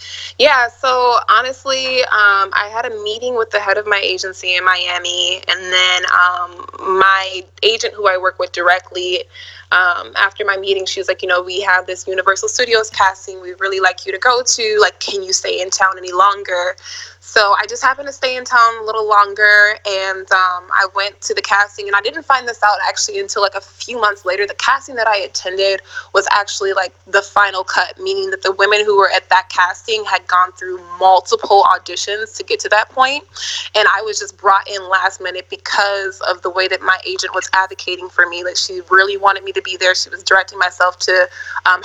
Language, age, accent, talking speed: English, 20-39, American, 215 wpm